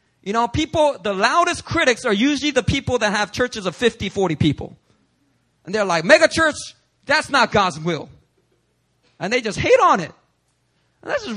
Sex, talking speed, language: male, 180 wpm, English